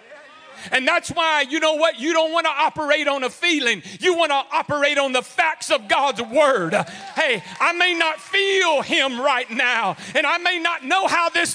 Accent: American